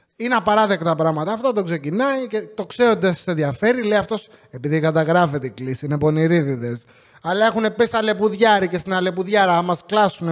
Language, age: English, 30-49